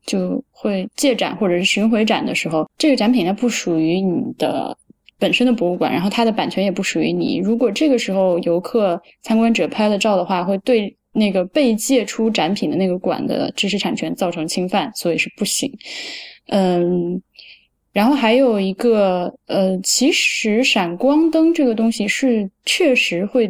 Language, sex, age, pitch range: Chinese, female, 10-29, 185-255 Hz